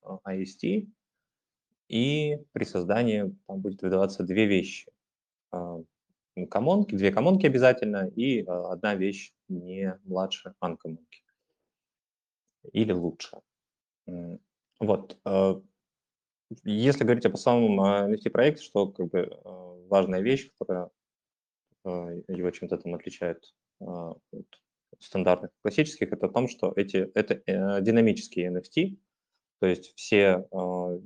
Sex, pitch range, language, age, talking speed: male, 90-120 Hz, Russian, 20-39, 100 wpm